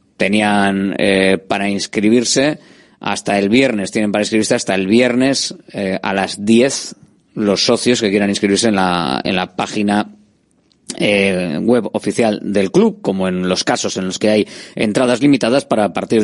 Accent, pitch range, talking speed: Spanish, 100-125 Hz, 165 wpm